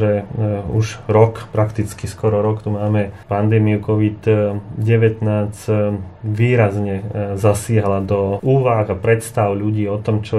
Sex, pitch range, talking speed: male, 105-115 Hz, 115 wpm